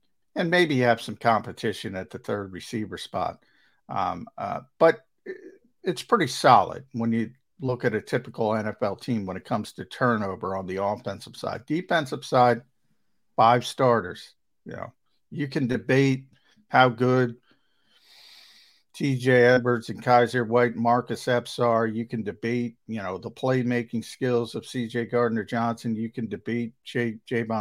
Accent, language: American, English